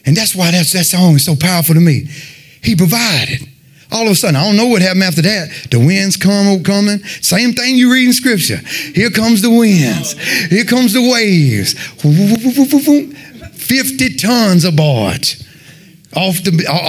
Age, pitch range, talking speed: 30-49, 135-180 Hz, 170 wpm